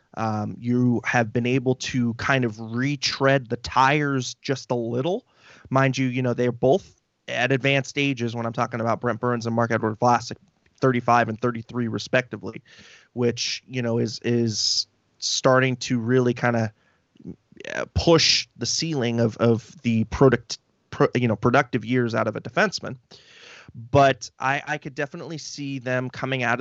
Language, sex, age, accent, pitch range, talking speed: English, male, 20-39, American, 115-135 Hz, 160 wpm